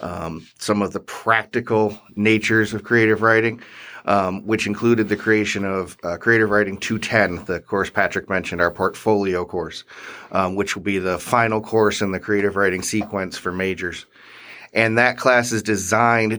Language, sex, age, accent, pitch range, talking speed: English, male, 30-49, American, 100-110 Hz, 165 wpm